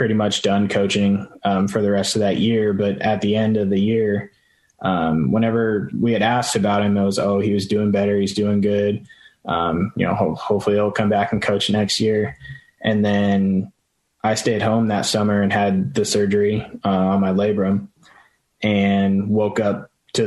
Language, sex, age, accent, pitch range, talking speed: English, male, 20-39, American, 100-110 Hz, 190 wpm